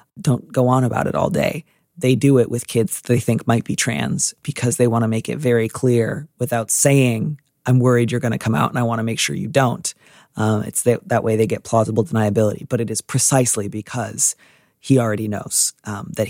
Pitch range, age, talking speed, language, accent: 110-130 Hz, 30-49, 225 wpm, English, American